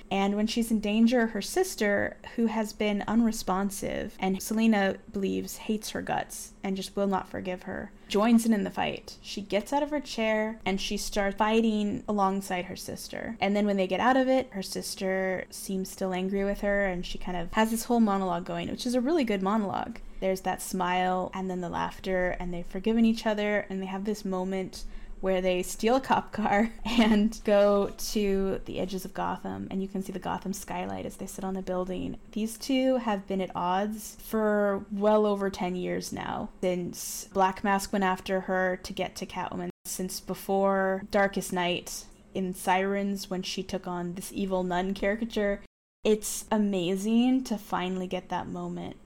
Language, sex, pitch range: English, female, 185-215 Hz